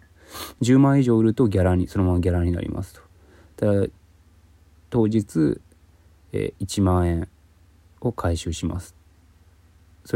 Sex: male